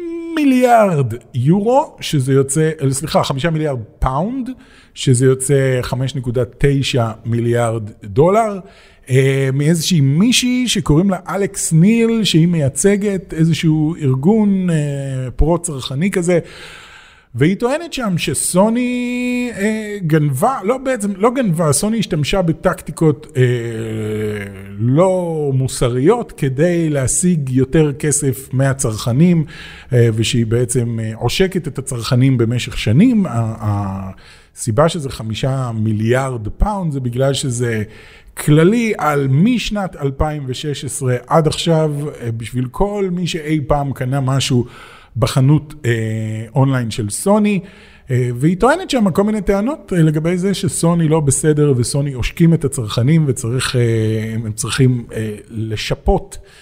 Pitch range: 125-185 Hz